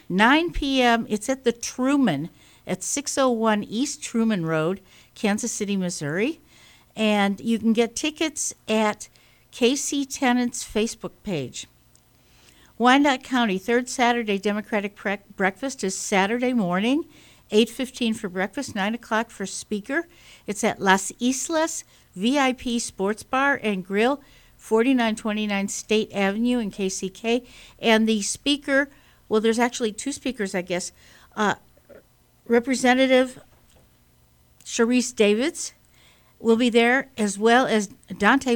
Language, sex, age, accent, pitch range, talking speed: English, female, 60-79, American, 195-250 Hz, 115 wpm